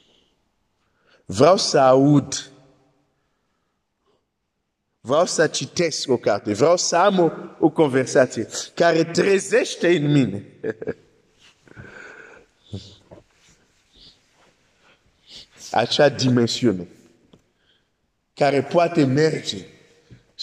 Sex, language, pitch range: male, Romanian, 110-150 Hz